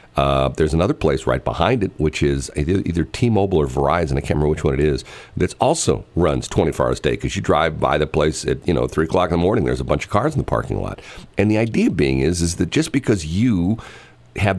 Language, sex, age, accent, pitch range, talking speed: English, male, 50-69, American, 70-95 Hz, 250 wpm